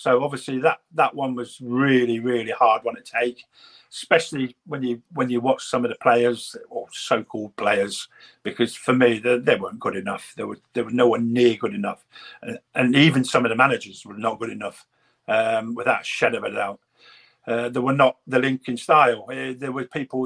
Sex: male